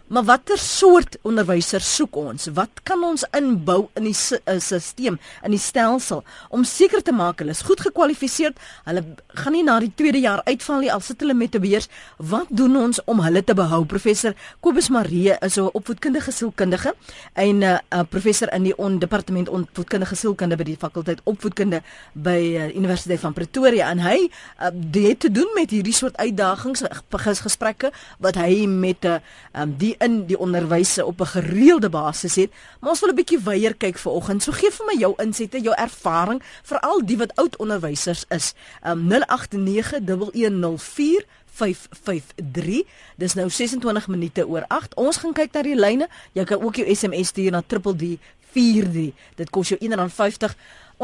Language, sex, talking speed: Malay, female, 175 wpm